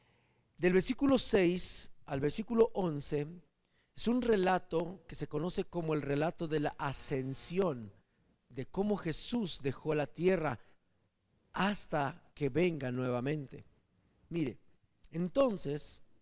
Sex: male